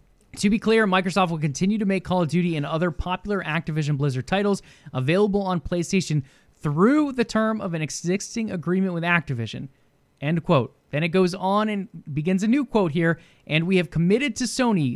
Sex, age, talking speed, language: male, 20-39, 190 wpm, English